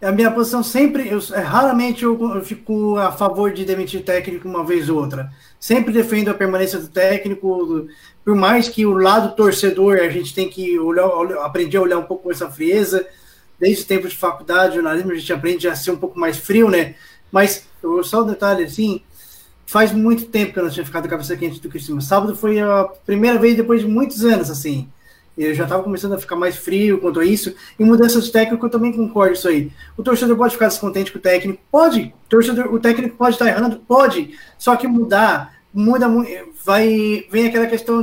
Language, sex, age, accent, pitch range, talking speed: Portuguese, male, 20-39, Brazilian, 180-230 Hz, 220 wpm